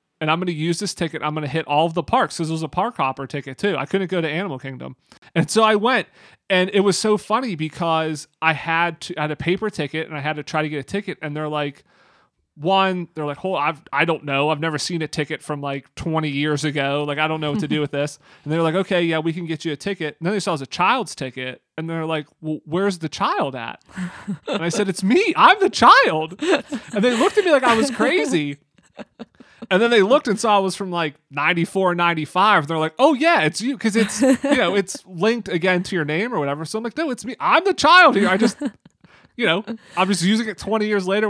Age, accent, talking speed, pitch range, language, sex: 30-49, American, 265 wpm, 155-205 Hz, English, male